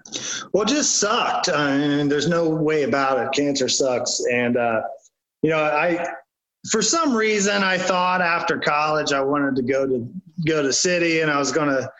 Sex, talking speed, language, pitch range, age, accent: male, 185 wpm, English, 140-180 Hz, 30-49, American